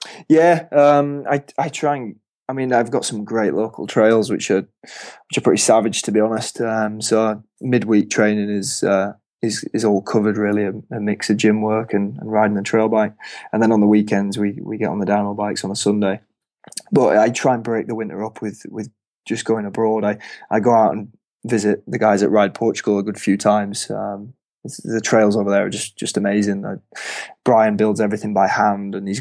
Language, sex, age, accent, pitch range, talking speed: English, male, 20-39, British, 100-110 Hz, 220 wpm